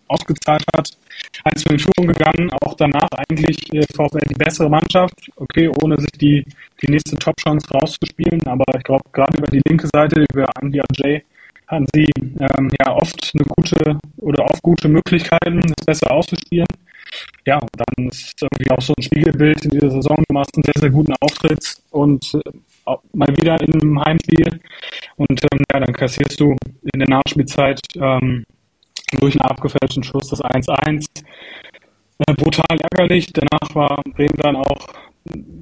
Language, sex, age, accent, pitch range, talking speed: German, male, 20-39, German, 140-155 Hz, 165 wpm